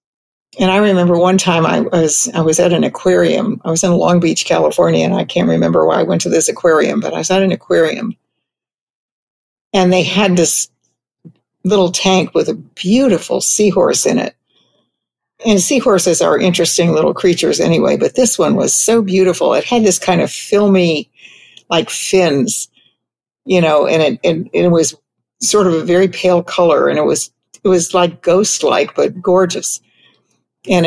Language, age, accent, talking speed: English, 60-79, American, 175 wpm